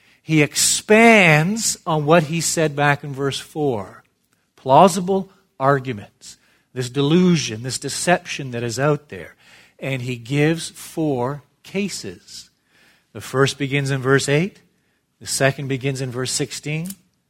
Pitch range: 120-155 Hz